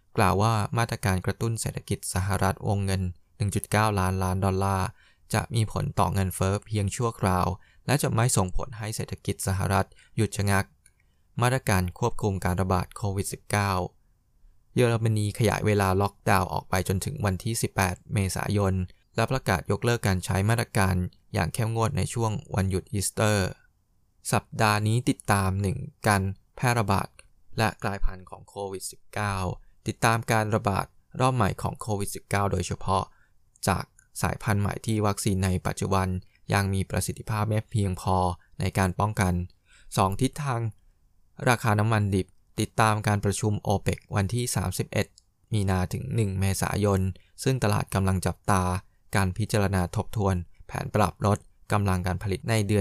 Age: 20-39